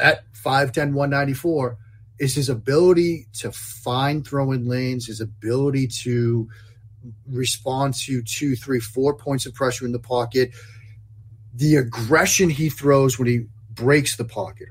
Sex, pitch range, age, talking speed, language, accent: male, 115-140 Hz, 30-49, 135 wpm, English, American